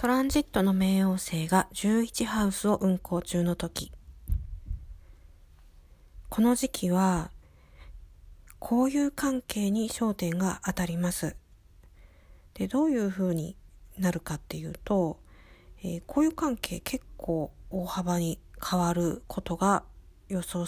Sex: female